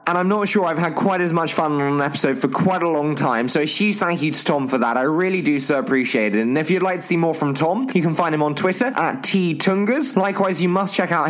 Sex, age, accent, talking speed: male, 20-39, British, 290 wpm